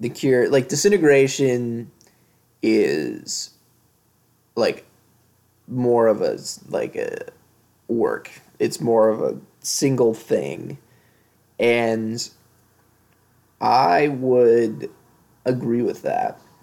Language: English